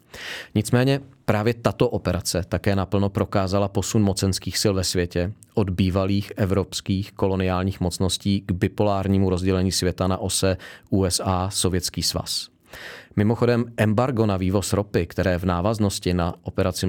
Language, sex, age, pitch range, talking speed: Czech, male, 40-59, 90-105 Hz, 125 wpm